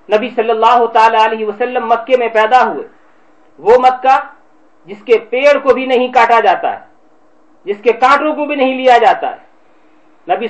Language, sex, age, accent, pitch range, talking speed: English, male, 40-59, Indian, 175-260 Hz, 160 wpm